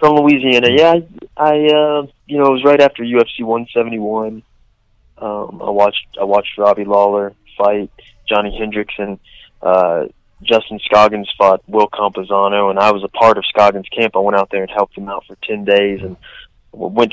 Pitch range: 100-115 Hz